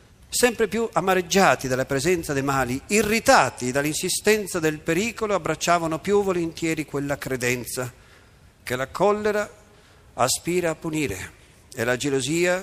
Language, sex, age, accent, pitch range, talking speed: Italian, male, 50-69, native, 125-185 Hz, 120 wpm